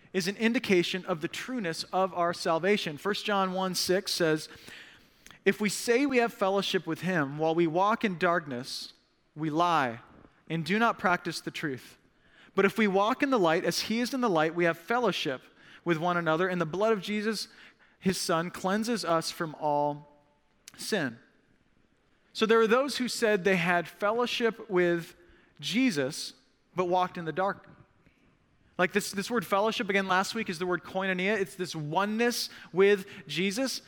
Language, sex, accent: English, male, American